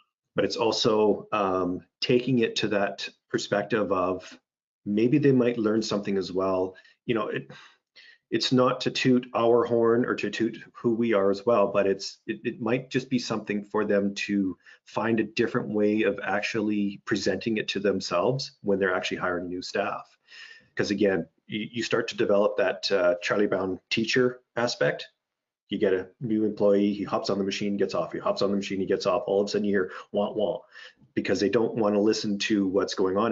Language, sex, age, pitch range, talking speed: English, male, 30-49, 100-120 Hz, 200 wpm